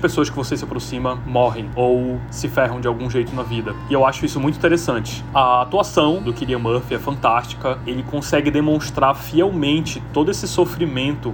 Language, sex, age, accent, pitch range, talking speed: Portuguese, male, 20-39, Brazilian, 125-150 Hz, 180 wpm